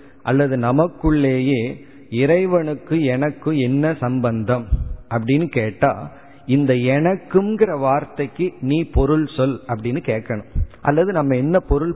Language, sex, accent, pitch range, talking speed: Tamil, male, native, 125-160 Hz, 100 wpm